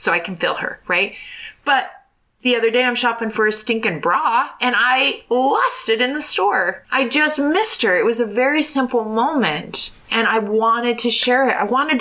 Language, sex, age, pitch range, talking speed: English, female, 20-39, 215-300 Hz, 205 wpm